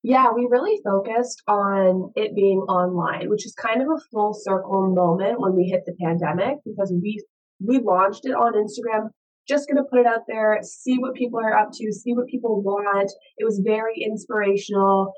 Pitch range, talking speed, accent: 185-225 Hz, 195 wpm, American